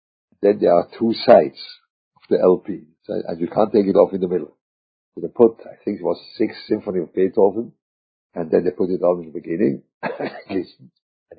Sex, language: male, English